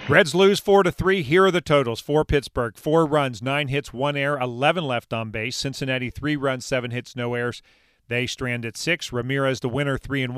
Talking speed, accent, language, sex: 215 wpm, American, English, male